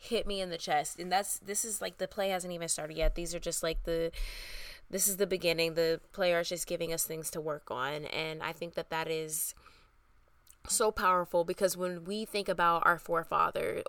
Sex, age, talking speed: female, 20-39, 215 wpm